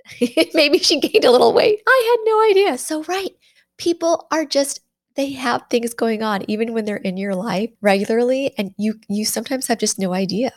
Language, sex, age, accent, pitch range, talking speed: English, female, 20-39, American, 185-240 Hz, 200 wpm